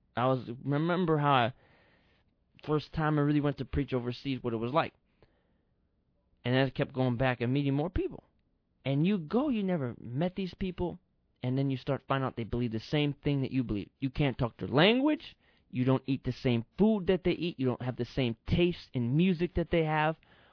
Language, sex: English, male